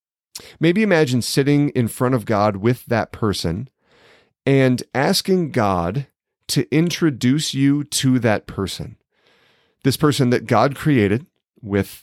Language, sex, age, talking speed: English, male, 40-59, 125 wpm